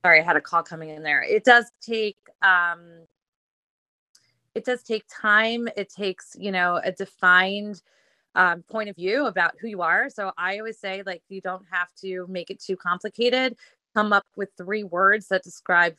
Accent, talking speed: American, 190 wpm